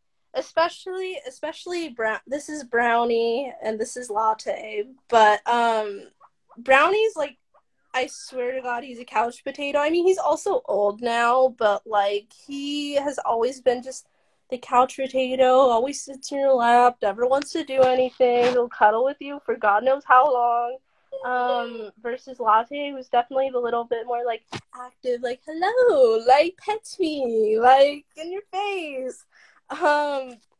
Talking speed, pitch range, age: 150 wpm, 235-300 Hz, 10-29